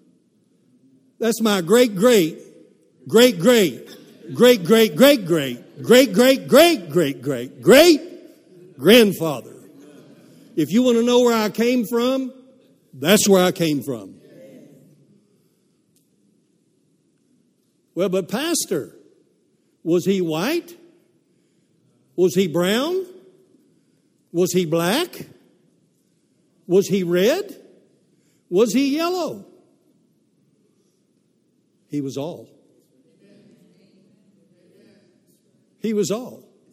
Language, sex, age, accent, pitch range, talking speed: English, male, 60-79, American, 170-235 Hz, 90 wpm